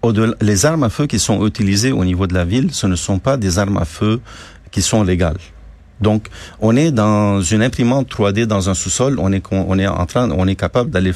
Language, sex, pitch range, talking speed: French, male, 90-120 Hz, 235 wpm